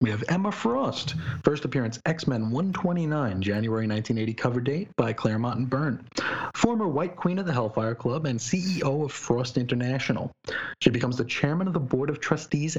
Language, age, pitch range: English, 30-49, 120-170 Hz